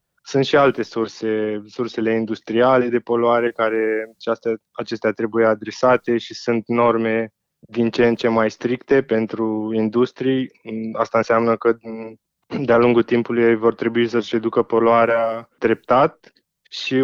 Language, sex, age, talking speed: Romanian, male, 20-39, 135 wpm